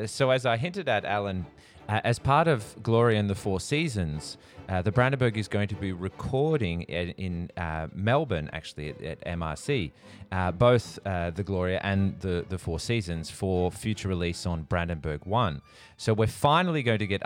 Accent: Australian